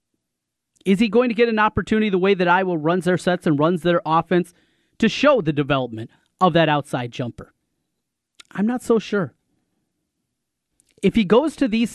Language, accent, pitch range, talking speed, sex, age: English, American, 145-190 Hz, 175 wpm, male, 30-49